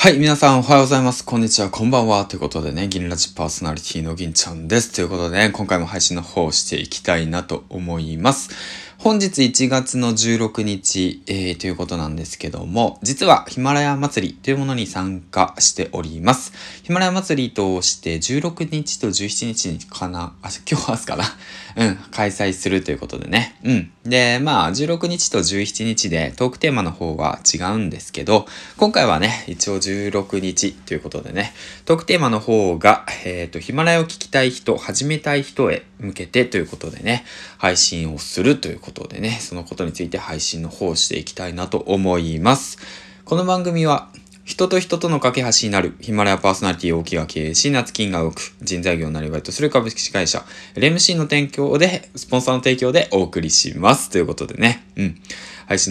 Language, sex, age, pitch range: Japanese, male, 20-39, 90-130 Hz